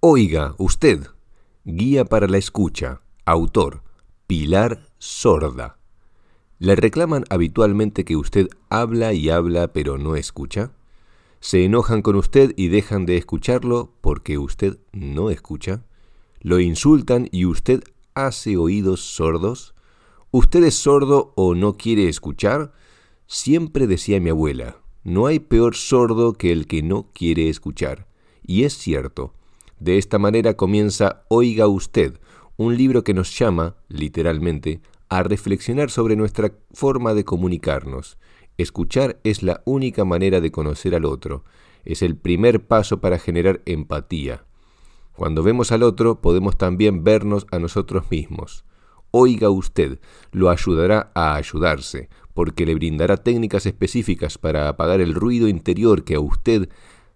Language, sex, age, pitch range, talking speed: Spanish, male, 50-69, 85-110 Hz, 135 wpm